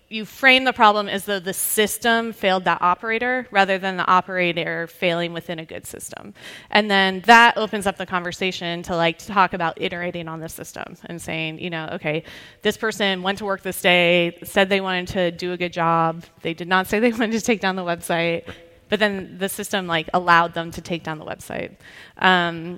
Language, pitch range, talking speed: English, 170-210 Hz, 210 wpm